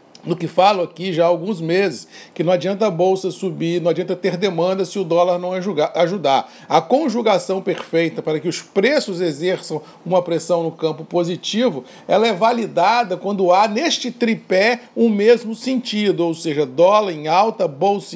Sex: male